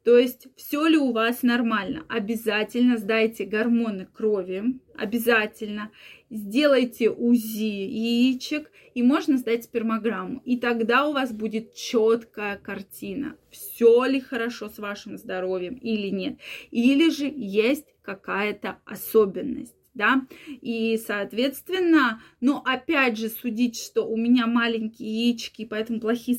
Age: 20-39